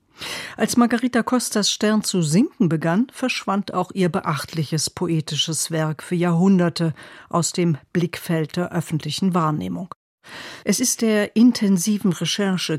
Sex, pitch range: female, 160-200 Hz